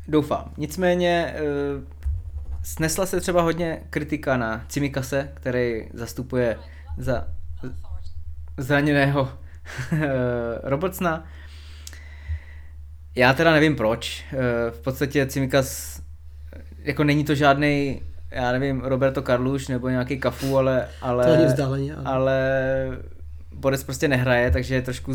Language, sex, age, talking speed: Czech, male, 20-39, 100 wpm